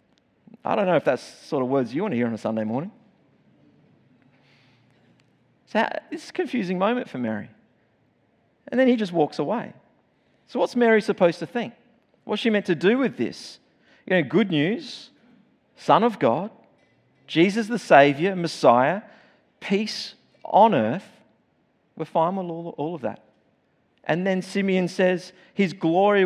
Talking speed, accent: 160 wpm, Australian